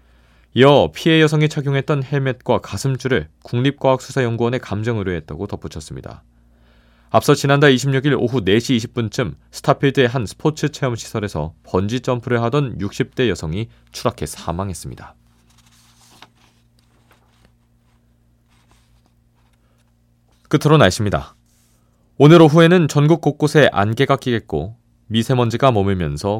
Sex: male